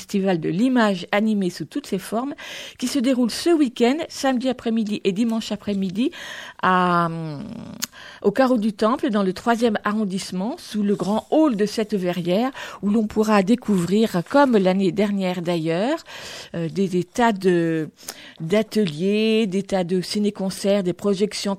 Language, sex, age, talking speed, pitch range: French, female, 50-69, 155 wpm, 185-230 Hz